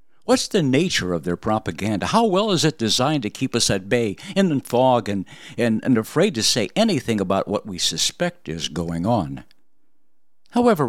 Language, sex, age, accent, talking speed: English, male, 60-79, American, 185 wpm